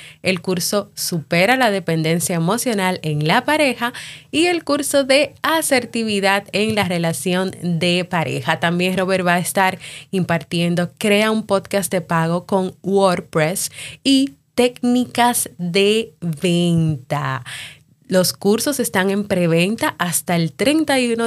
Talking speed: 125 wpm